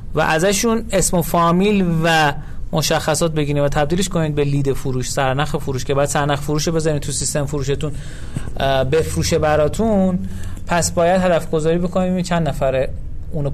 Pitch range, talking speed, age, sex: 135-185 Hz, 155 wpm, 30-49, male